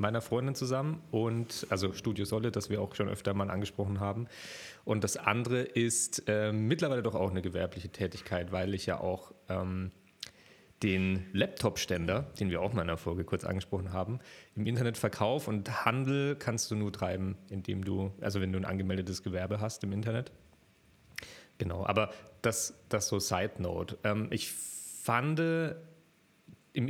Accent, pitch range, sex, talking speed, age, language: German, 100-120 Hz, male, 165 wpm, 30-49, German